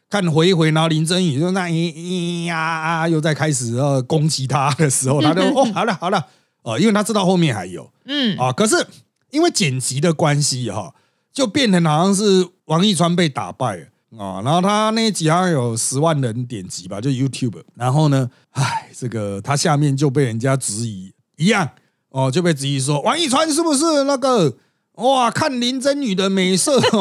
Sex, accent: male, native